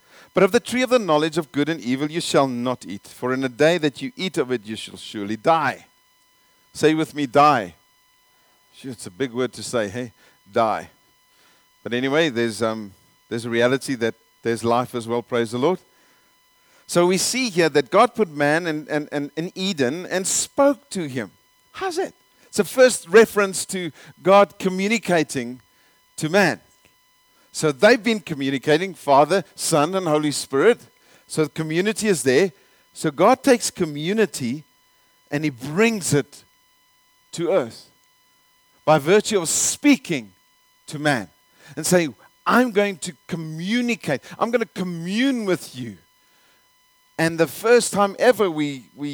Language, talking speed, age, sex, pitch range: English, 160 wpm, 50-69, male, 135-205 Hz